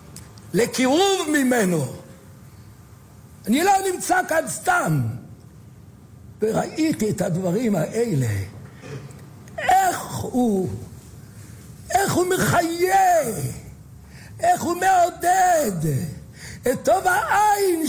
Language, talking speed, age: Hebrew, 75 wpm, 60-79